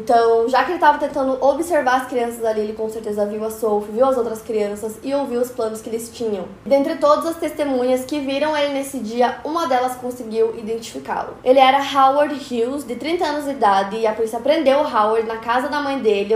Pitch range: 220-270 Hz